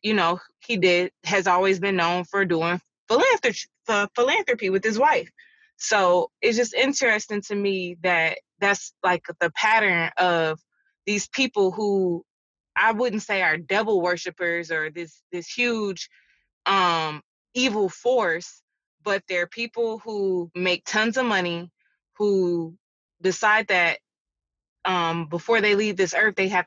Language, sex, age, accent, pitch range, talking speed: English, female, 20-39, American, 175-220 Hz, 135 wpm